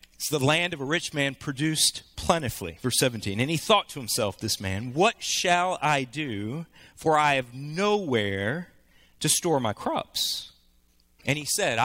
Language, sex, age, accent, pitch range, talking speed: English, male, 40-59, American, 110-165 Hz, 165 wpm